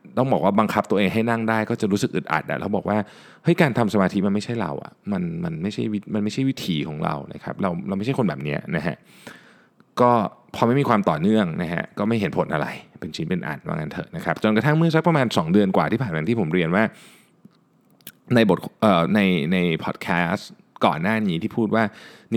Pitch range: 95-135 Hz